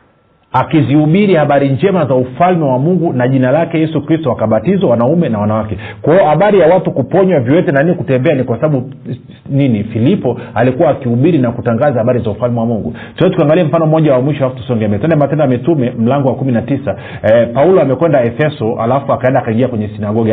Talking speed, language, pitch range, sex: 175 wpm, Swahili, 120-155 Hz, male